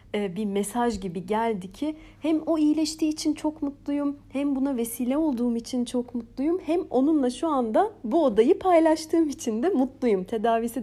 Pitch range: 220-300 Hz